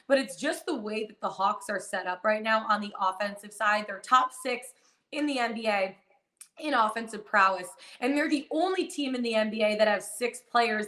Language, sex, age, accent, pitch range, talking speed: English, female, 20-39, American, 215-270 Hz, 210 wpm